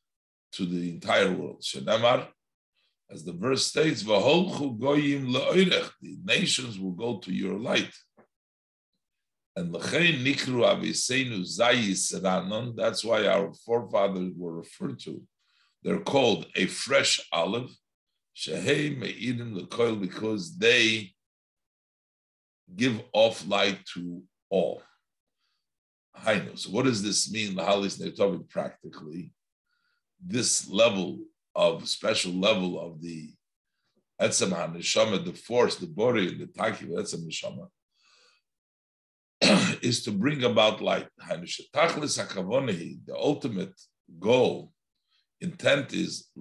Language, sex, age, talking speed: English, male, 50-69, 85 wpm